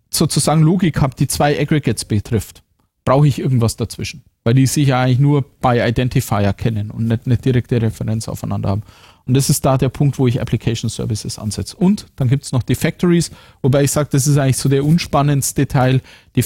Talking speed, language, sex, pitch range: 205 wpm, German, male, 115-145 Hz